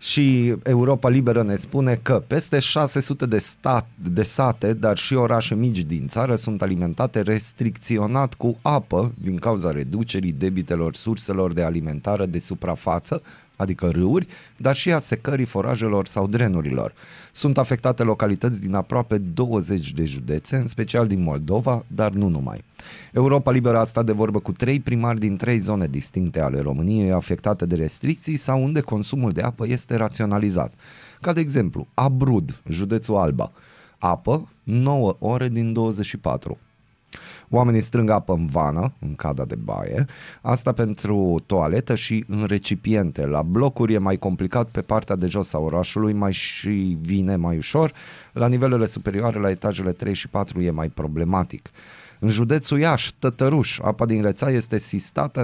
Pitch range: 95-125 Hz